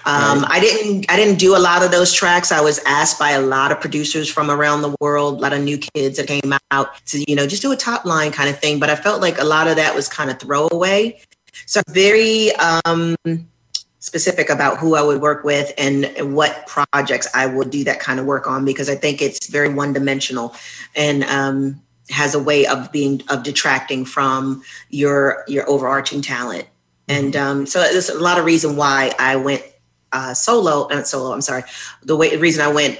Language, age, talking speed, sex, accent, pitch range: English, 40-59, 220 wpm, female, American, 140-170 Hz